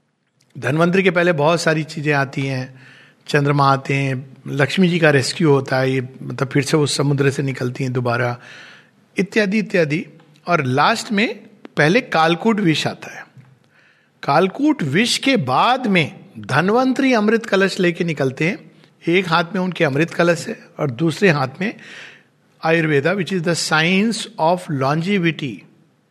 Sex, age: male, 50-69